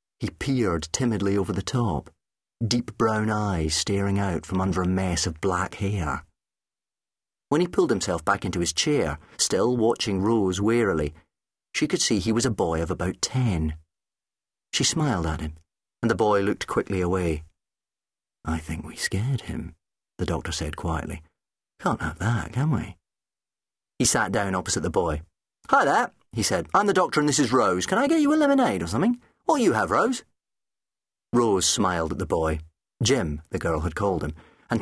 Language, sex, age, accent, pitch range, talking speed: English, male, 40-59, British, 80-115 Hz, 180 wpm